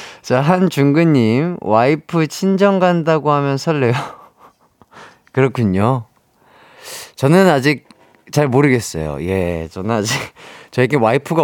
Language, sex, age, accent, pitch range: Korean, male, 30-49, native, 105-160 Hz